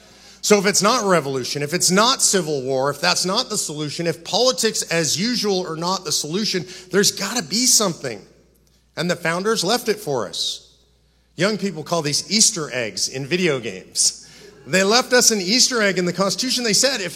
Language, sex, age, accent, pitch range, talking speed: English, male, 40-59, American, 170-220 Hz, 195 wpm